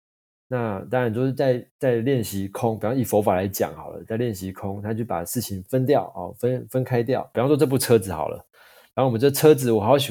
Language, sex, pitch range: Chinese, male, 95-125 Hz